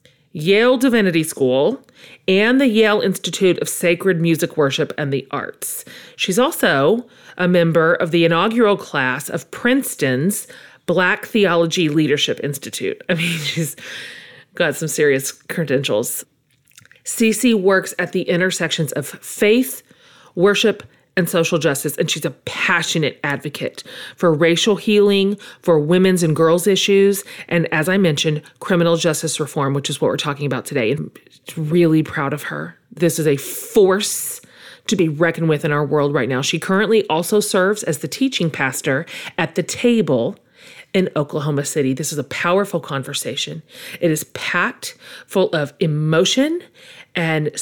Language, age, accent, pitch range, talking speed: English, 40-59, American, 155-200 Hz, 145 wpm